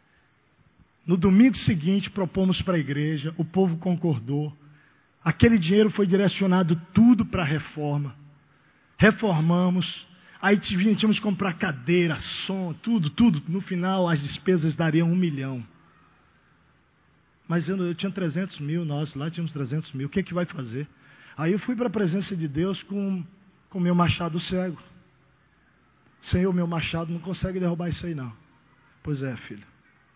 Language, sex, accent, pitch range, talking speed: Portuguese, male, Brazilian, 140-185 Hz, 150 wpm